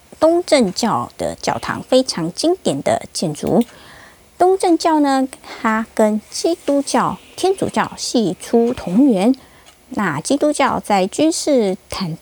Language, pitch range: Chinese, 195-280 Hz